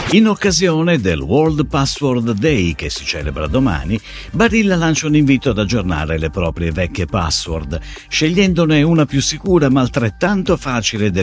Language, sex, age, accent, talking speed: Italian, male, 50-69, native, 150 wpm